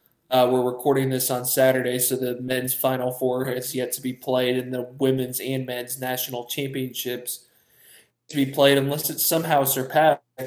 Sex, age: male, 20-39